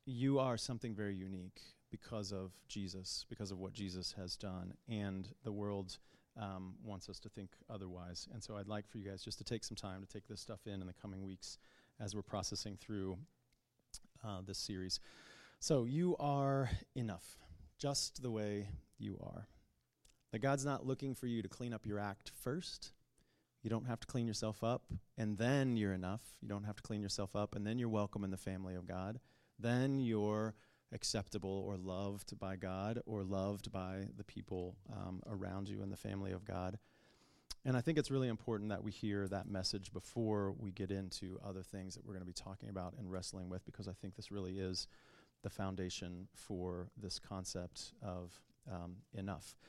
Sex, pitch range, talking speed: male, 95-115 Hz, 195 wpm